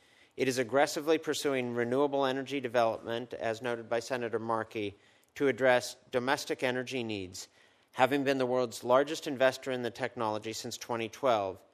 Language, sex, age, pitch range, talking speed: English, male, 50-69, 115-140 Hz, 145 wpm